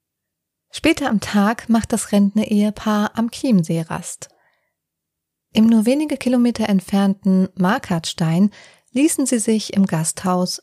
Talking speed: 120 wpm